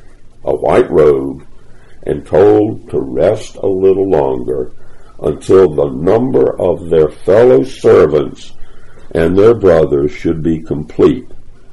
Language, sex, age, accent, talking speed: English, male, 60-79, American, 120 wpm